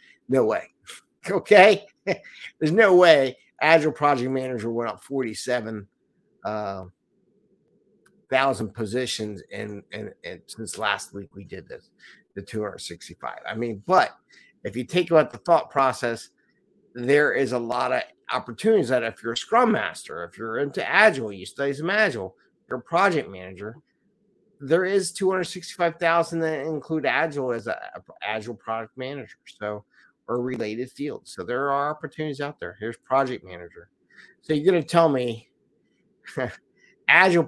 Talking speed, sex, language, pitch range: 145 wpm, male, English, 115-165 Hz